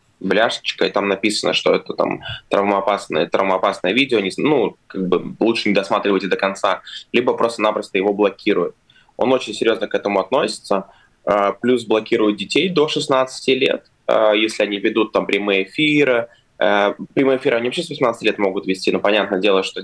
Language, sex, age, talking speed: Russian, male, 20-39, 155 wpm